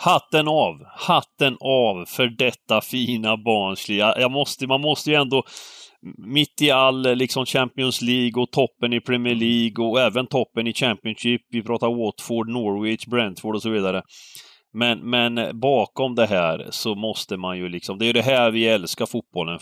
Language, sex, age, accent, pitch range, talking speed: Swedish, male, 30-49, native, 100-130 Hz, 165 wpm